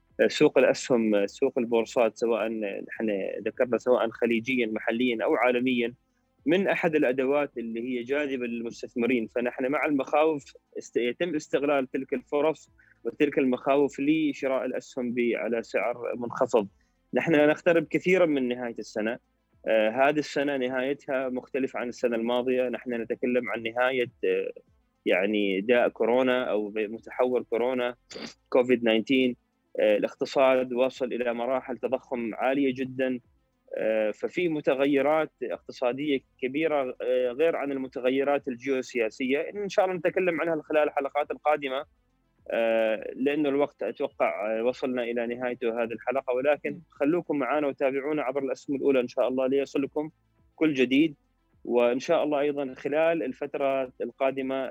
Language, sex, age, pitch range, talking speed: Arabic, male, 20-39, 120-145 Hz, 120 wpm